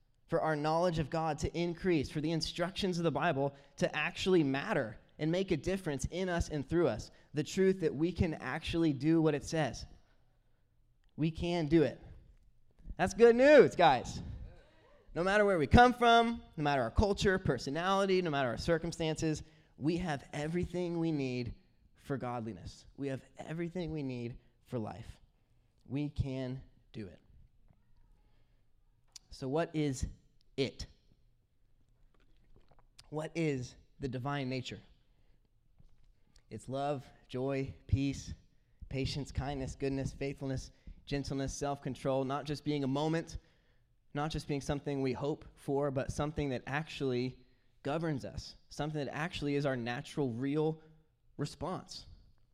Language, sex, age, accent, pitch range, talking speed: English, male, 20-39, American, 125-160 Hz, 140 wpm